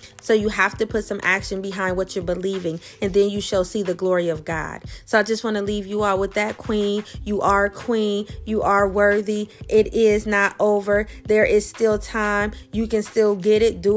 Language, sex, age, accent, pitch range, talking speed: English, female, 30-49, American, 190-210 Hz, 220 wpm